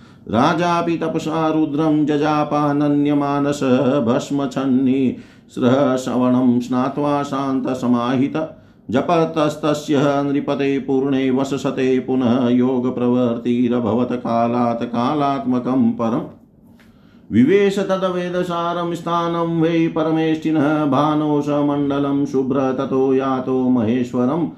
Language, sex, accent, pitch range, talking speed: Hindi, male, native, 130-160 Hz, 75 wpm